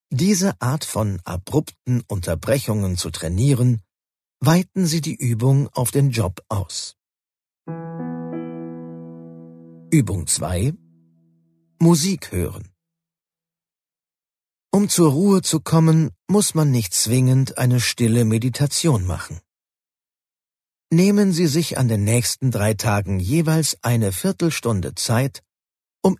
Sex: male